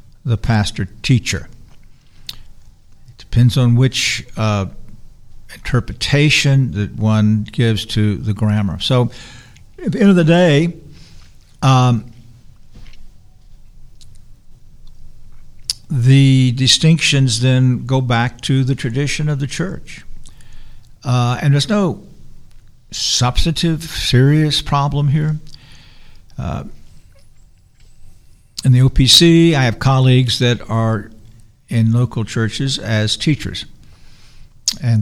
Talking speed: 95 wpm